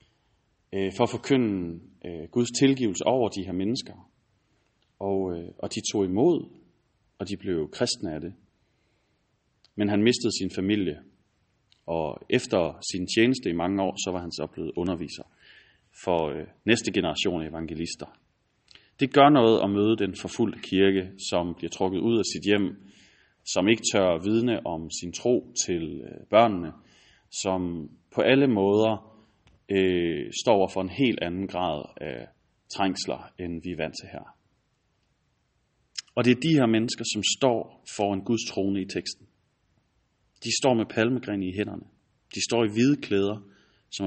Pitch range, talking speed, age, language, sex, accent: 95-115 Hz, 160 wpm, 30-49, Danish, male, native